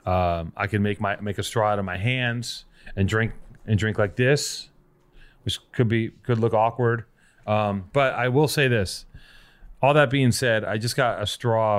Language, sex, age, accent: English, male, 30-49, American